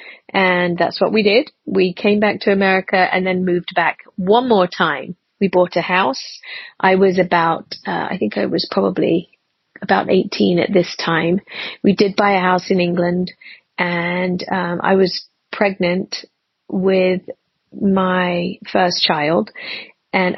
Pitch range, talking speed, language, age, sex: 175-200 Hz, 155 wpm, English, 30-49, female